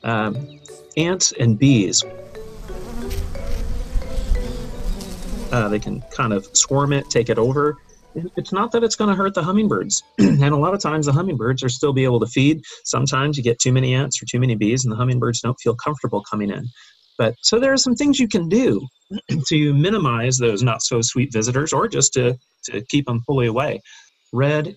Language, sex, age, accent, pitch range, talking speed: English, male, 30-49, American, 120-150 Hz, 185 wpm